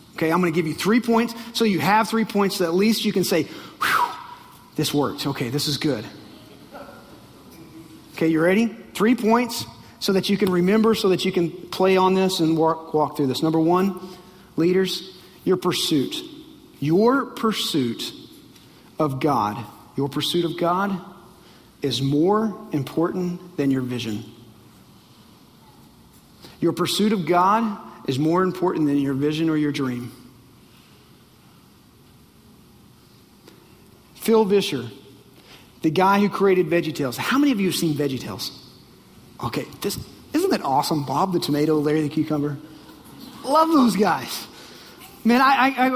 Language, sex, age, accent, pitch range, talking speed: English, male, 40-59, American, 155-210 Hz, 140 wpm